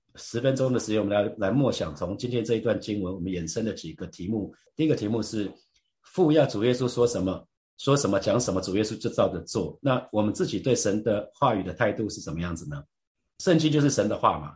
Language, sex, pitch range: Chinese, male, 95-125 Hz